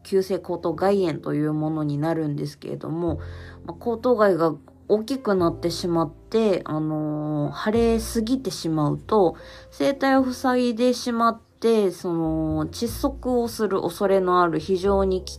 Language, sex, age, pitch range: Japanese, female, 20-39, 155-215 Hz